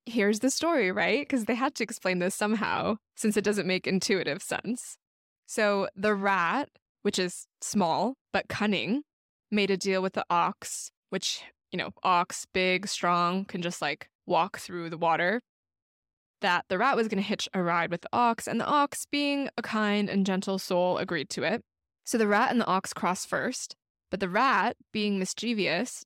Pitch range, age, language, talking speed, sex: 180-230 Hz, 20-39, English, 185 wpm, female